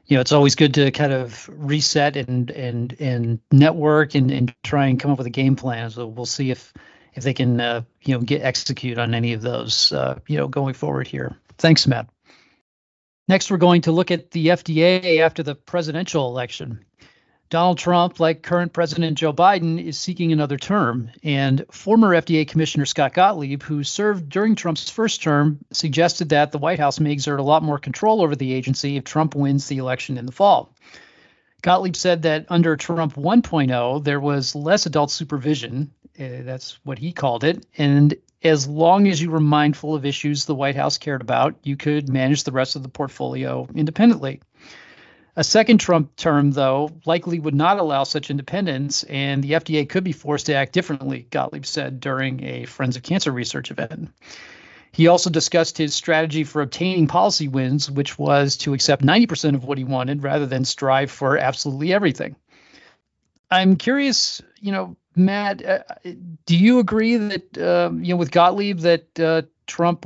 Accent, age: American, 40-59